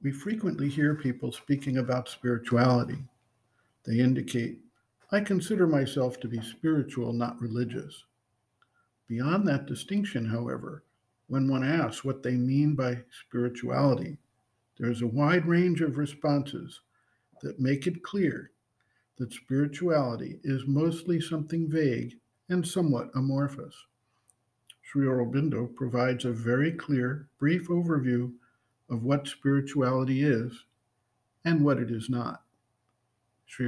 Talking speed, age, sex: 120 wpm, 50-69, male